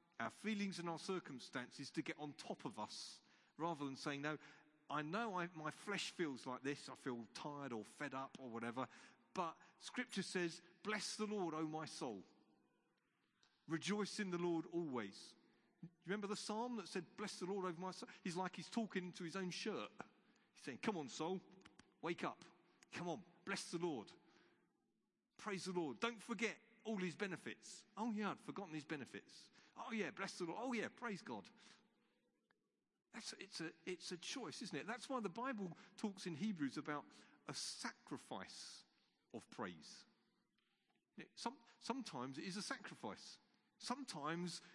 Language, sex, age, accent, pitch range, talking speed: English, male, 40-59, British, 160-215 Hz, 165 wpm